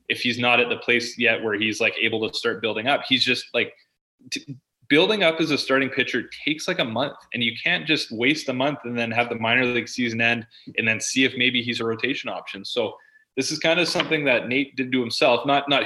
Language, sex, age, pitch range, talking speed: English, male, 20-39, 115-145 Hz, 245 wpm